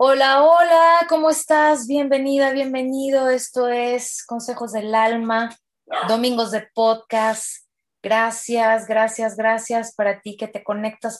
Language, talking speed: Spanish, 120 wpm